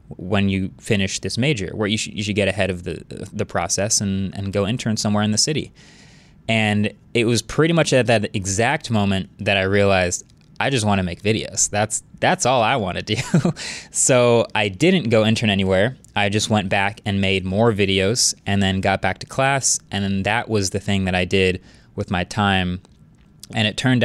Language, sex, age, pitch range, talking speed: English, male, 20-39, 95-115 Hz, 210 wpm